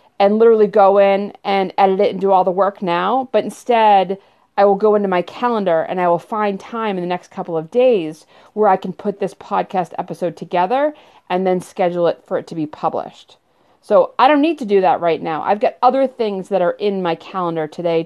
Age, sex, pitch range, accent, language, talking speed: 40-59, female, 180-220 Hz, American, English, 225 wpm